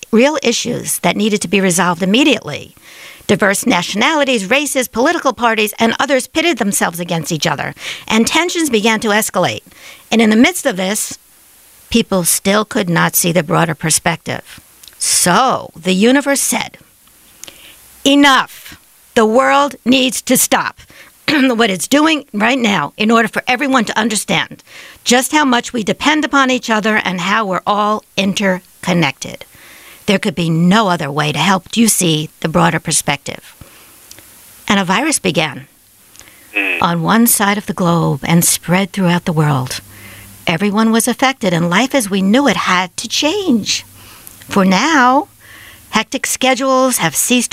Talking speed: 150 wpm